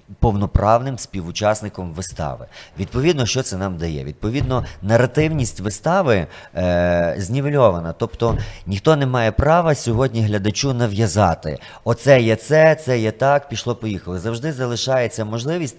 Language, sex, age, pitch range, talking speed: Ukrainian, male, 30-49, 90-120 Hz, 120 wpm